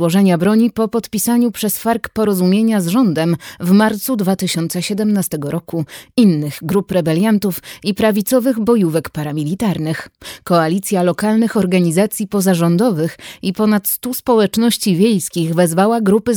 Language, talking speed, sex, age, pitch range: Polish, 115 wpm, female, 30-49, 180-225 Hz